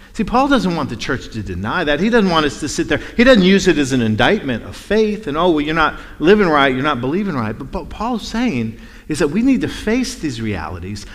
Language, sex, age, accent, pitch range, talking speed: English, male, 50-69, American, 105-155 Hz, 260 wpm